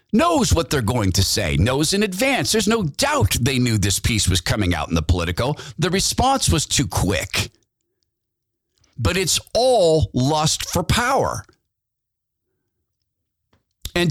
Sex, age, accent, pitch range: male, 50-69, American, 110-165 Hz